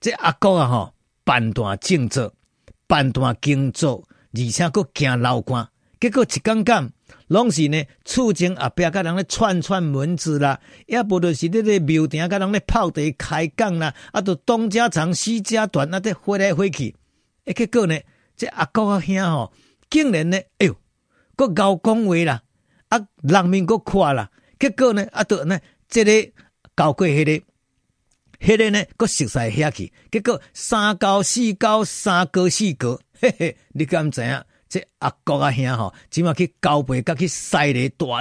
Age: 50-69